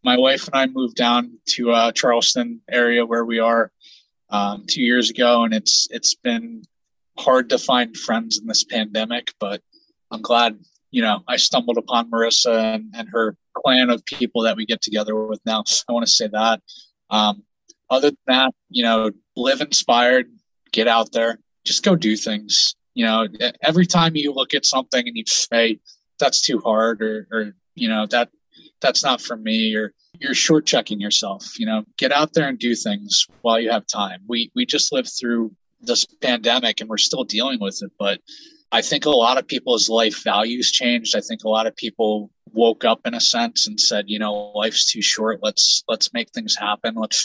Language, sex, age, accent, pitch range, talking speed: English, male, 20-39, American, 110-130 Hz, 200 wpm